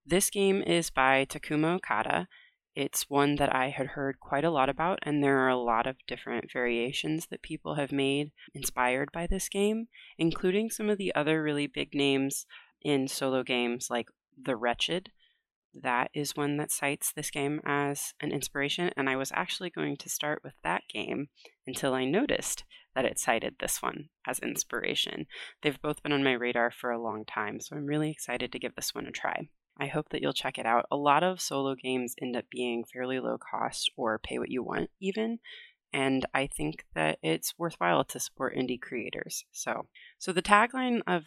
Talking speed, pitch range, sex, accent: 195 wpm, 130-170 Hz, female, American